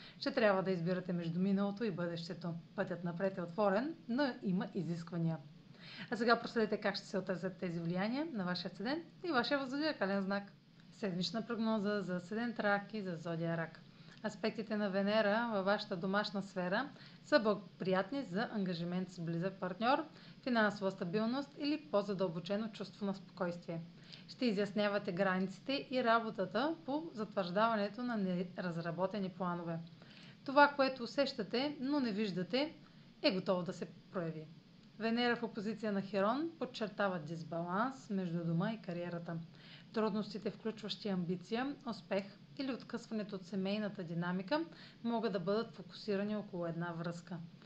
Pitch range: 180-225 Hz